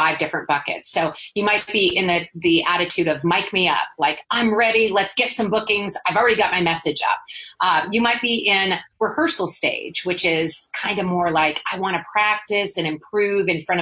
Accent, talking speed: American, 215 wpm